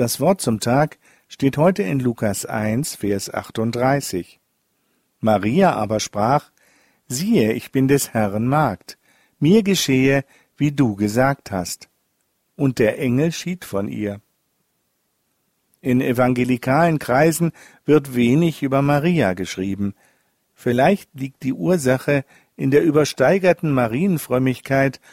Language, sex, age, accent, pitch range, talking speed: German, male, 50-69, German, 115-150 Hz, 115 wpm